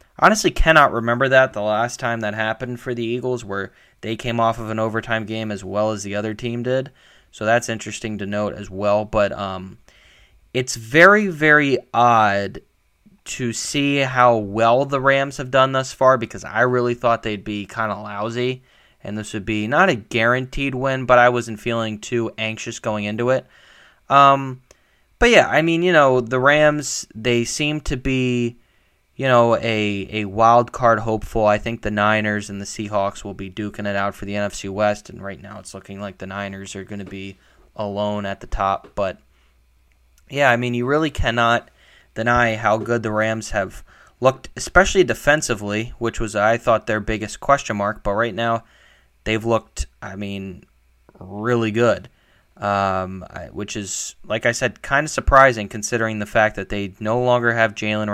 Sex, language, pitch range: male, English, 105-125 Hz